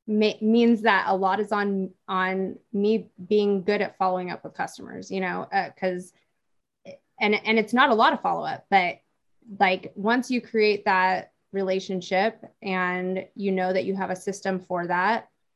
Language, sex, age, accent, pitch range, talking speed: English, female, 20-39, American, 185-210 Hz, 175 wpm